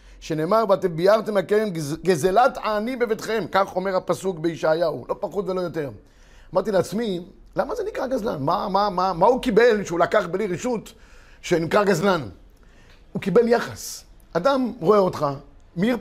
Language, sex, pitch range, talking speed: Hebrew, male, 175-250 Hz, 150 wpm